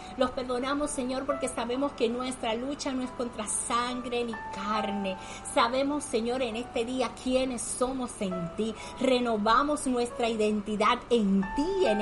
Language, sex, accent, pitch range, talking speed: Spanish, female, American, 205-255 Hz, 145 wpm